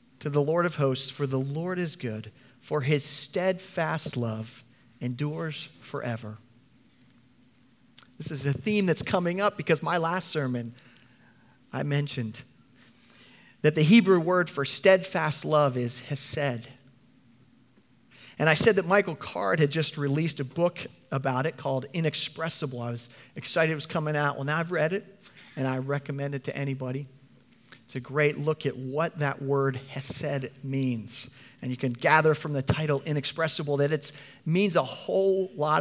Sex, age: male, 40-59